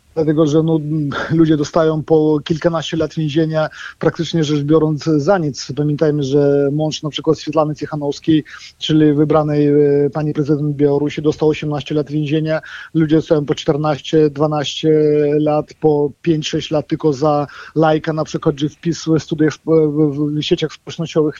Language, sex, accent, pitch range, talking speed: Polish, male, native, 150-175 Hz, 155 wpm